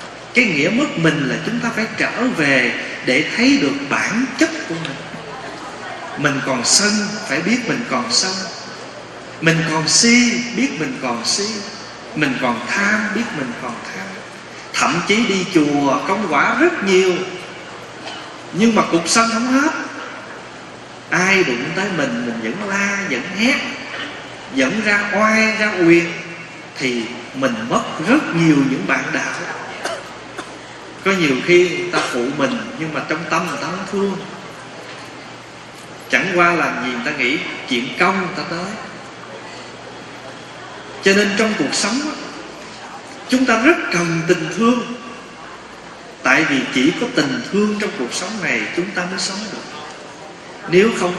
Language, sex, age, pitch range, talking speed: Vietnamese, male, 30-49, 165-225 Hz, 150 wpm